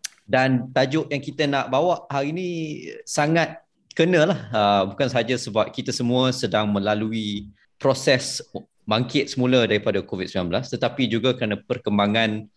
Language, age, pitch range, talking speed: Malay, 20-39, 95-120 Hz, 130 wpm